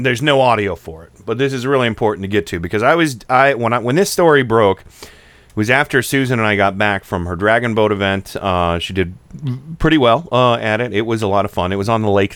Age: 40-59